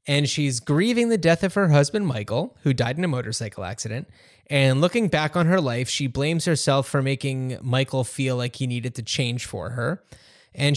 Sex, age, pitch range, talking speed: male, 20-39, 125-155 Hz, 200 wpm